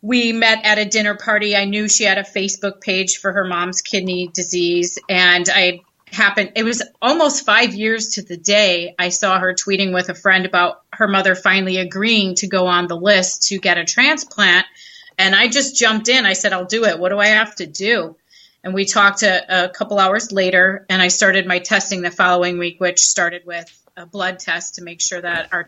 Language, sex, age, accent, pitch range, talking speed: English, female, 30-49, American, 185-215 Hz, 215 wpm